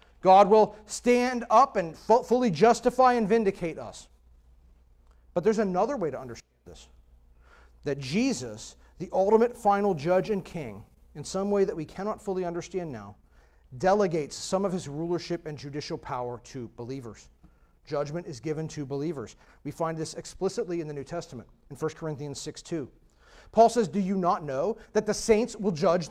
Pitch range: 155-245 Hz